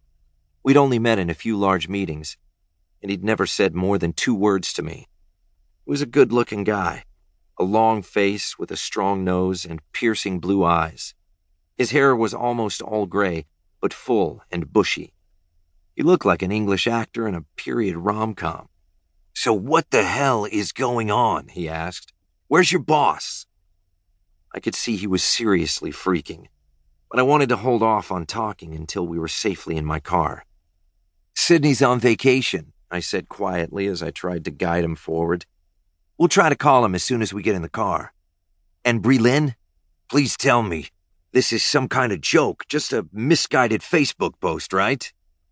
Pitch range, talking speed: 80-115 Hz, 175 wpm